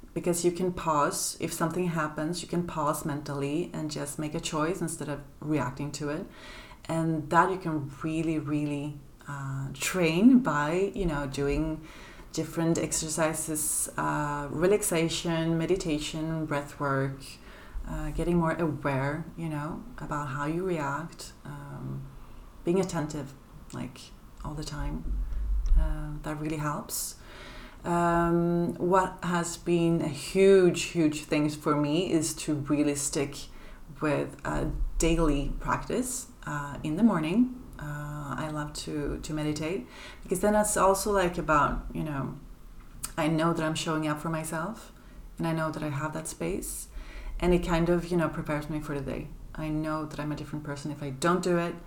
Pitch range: 145-170 Hz